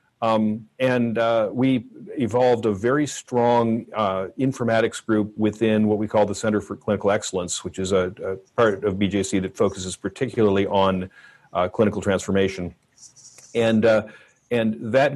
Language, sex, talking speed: English, male, 150 wpm